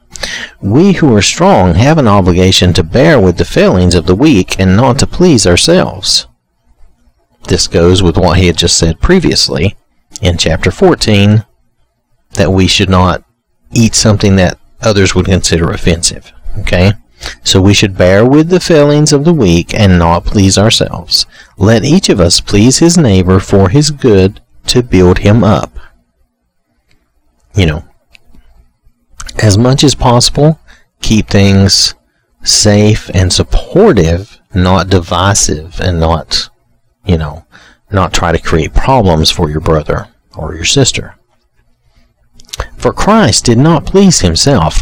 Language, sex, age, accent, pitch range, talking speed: English, male, 40-59, American, 85-115 Hz, 140 wpm